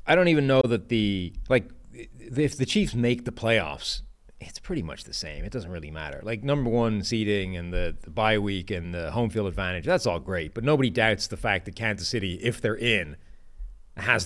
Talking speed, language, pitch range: 215 wpm, English, 100-125 Hz